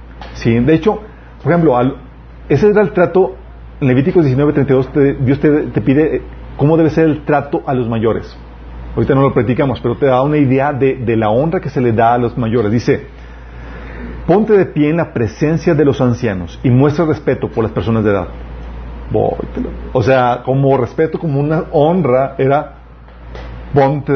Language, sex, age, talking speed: Spanish, male, 40-59, 185 wpm